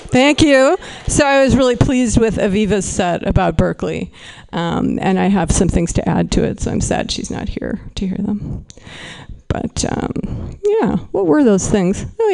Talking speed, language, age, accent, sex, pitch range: 190 wpm, English, 50-69, American, female, 200-250 Hz